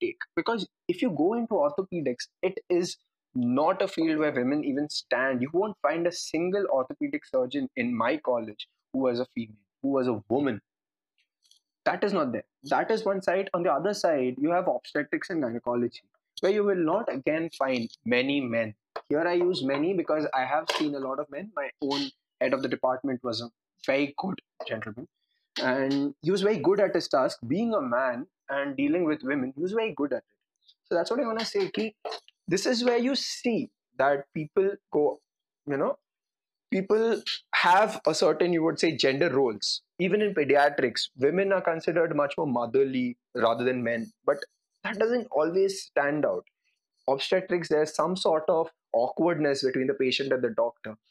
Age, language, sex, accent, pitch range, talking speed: 20-39, Hindi, male, native, 135-220 Hz, 190 wpm